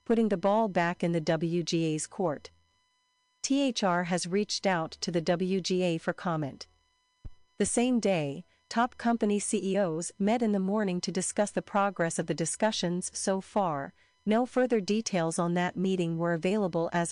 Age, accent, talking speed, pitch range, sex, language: 40-59, American, 160 wpm, 170-220 Hz, female, English